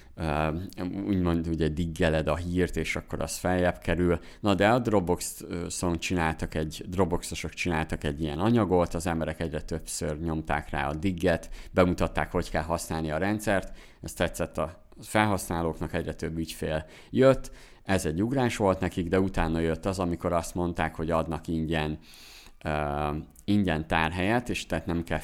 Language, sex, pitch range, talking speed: Hungarian, male, 80-90 Hz, 155 wpm